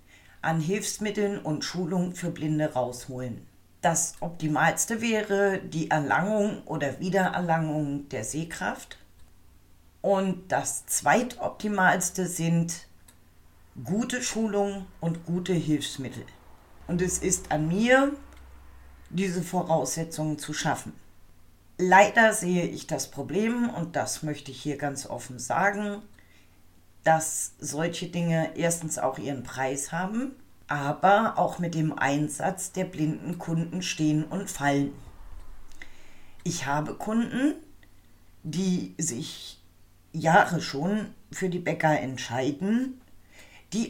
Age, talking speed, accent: 40-59, 105 wpm, German